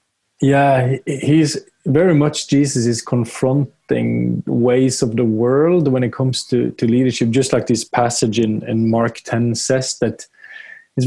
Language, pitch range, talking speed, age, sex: English, 125-155 Hz, 150 wpm, 20-39, male